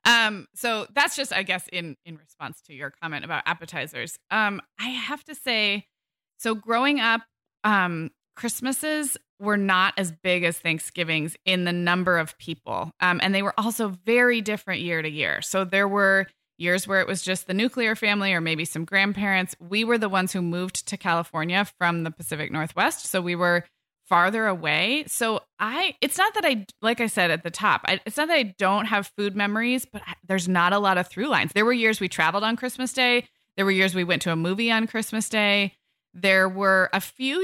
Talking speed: 205 wpm